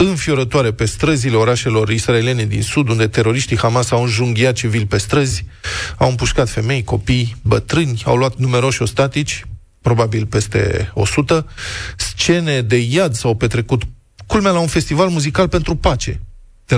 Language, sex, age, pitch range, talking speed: Romanian, male, 20-39, 110-135 Hz, 145 wpm